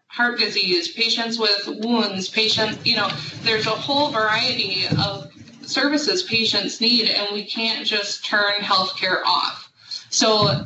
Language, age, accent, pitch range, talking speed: English, 20-39, American, 190-220 Hz, 135 wpm